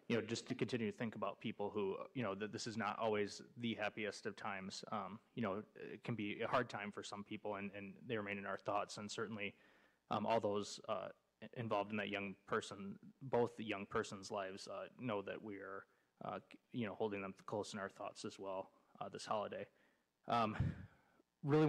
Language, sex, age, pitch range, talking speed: English, male, 20-39, 100-120 Hz, 210 wpm